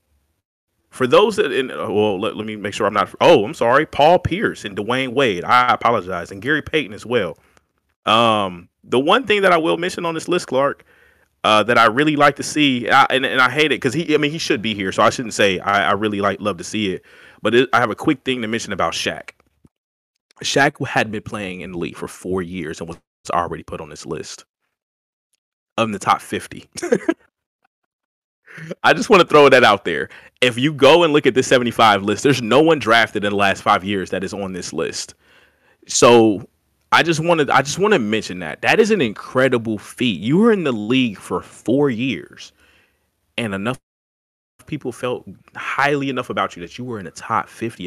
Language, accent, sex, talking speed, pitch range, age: English, American, male, 215 wpm, 95-140 Hz, 30-49